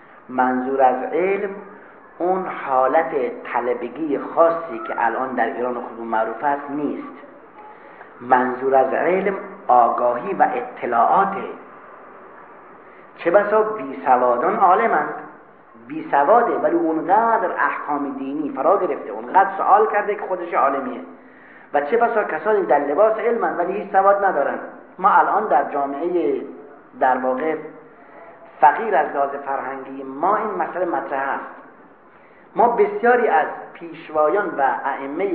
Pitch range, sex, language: 140-205 Hz, male, Persian